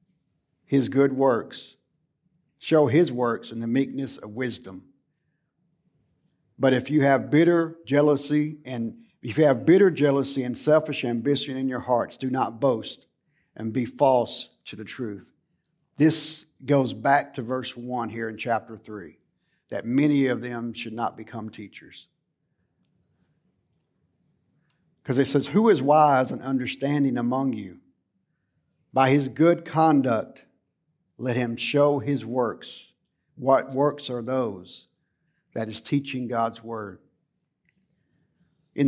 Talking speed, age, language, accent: 130 wpm, 50-69, English, American